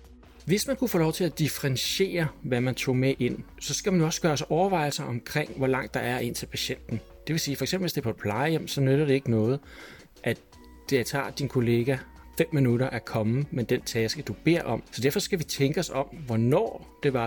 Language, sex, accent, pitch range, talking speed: Danish, male, native, 115-160 Hz, 235 wpm